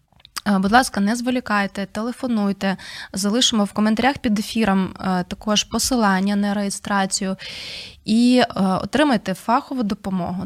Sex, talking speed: female, 105 wpm